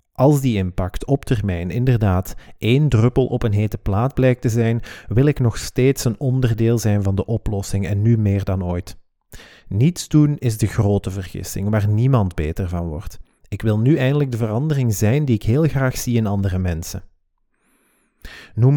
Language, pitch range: Dutch, 100-130 Hz